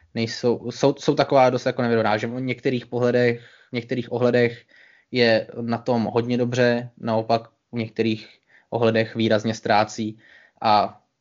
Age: 20-39